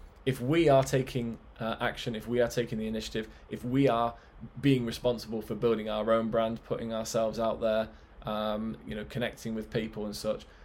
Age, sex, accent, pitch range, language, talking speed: 20-39, male, British, 110-125 Hz, English, 190 wpm